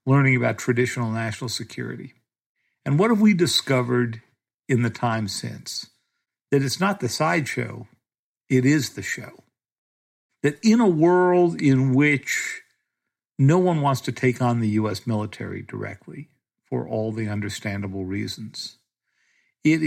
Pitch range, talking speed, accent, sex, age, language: 110-130 Hz, 135 wpm, American, male, 60-79, English